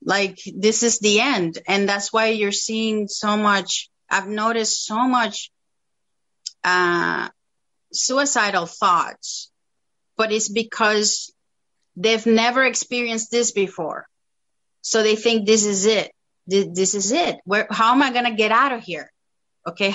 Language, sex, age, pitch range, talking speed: English, female, 30-49, 205-245 Hz, 140 wpm